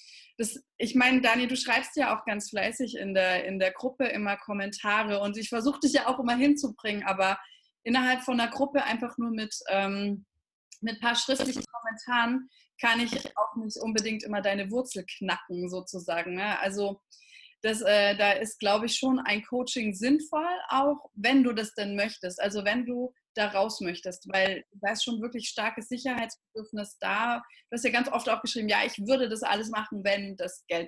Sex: female